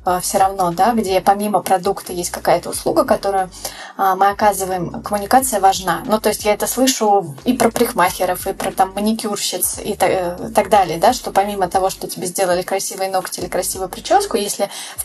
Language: Russian